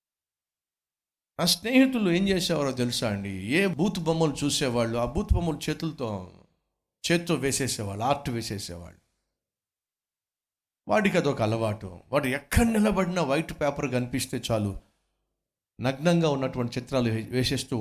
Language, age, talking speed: Telugu, 50-69, 110 wpm